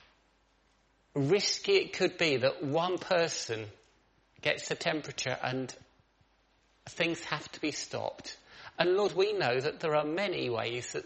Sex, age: male, 40-59